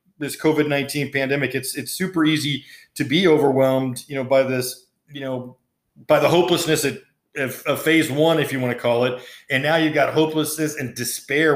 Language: English